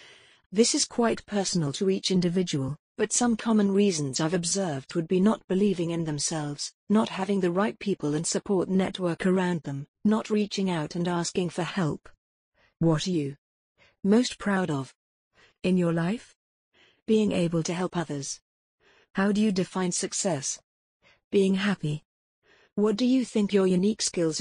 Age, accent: 50-69, British